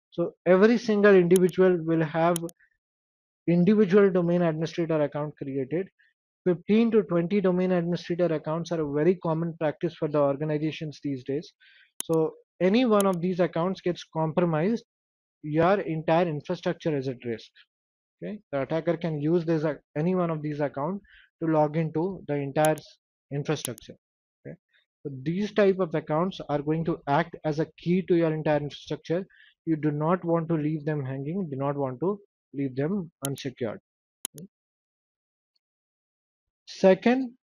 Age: 20-39